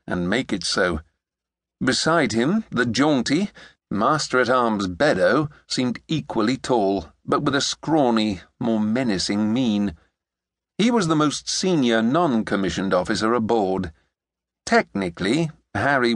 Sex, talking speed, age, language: male, 110 wpm, 50-69, English